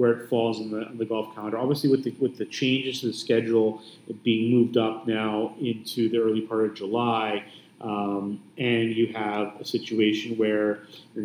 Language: English